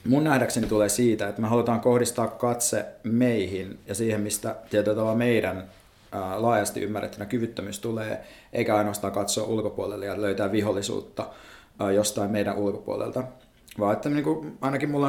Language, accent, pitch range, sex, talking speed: Finnish, native, 105-125 Hz, male, 140 wpm